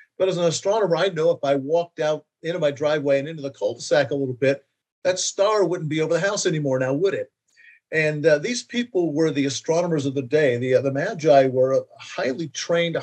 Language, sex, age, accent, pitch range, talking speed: English, male, 50-69, American, 135-170 Hz, 225 wpm